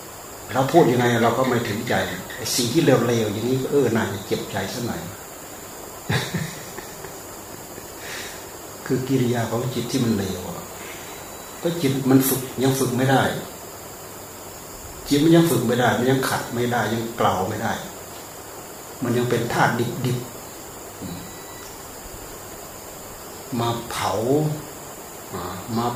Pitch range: 115-130 Hz